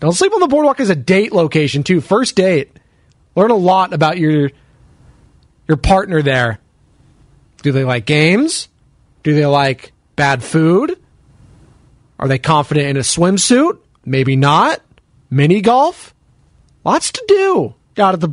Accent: American